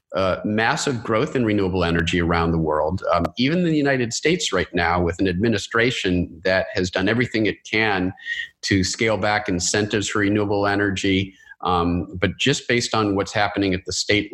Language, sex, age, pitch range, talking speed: English, male, 40-59, 90-115 Hz, 180 wpm